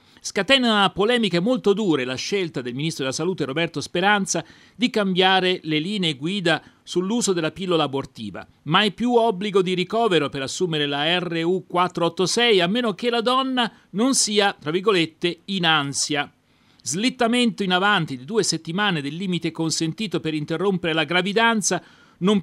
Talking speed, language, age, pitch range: 145 wpm, Italian, 40-59, 145-195 Hz